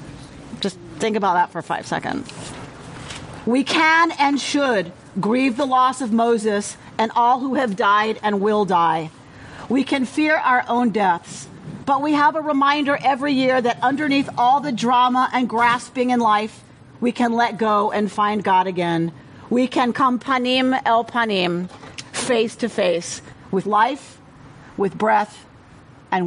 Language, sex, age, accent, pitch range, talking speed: English, female, 40-59, American, 175-245 Hz, 155 wpm